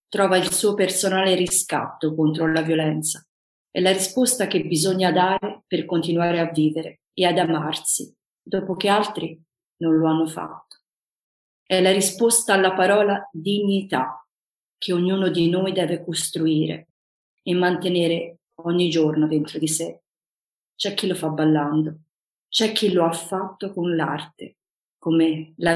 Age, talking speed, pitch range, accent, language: 40-59, 140 wpm, 160-190 Hz, native, Italian